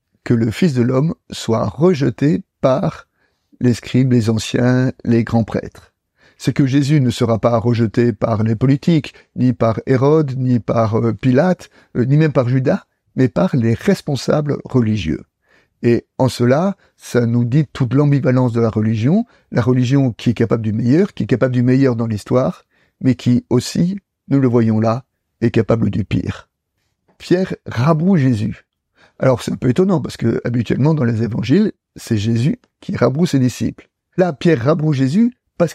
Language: French